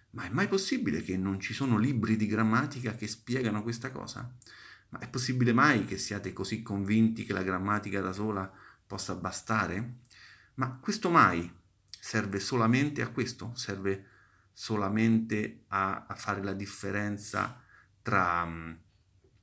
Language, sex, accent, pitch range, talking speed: Italian, male, native, 95-120 Hz, 140 wpm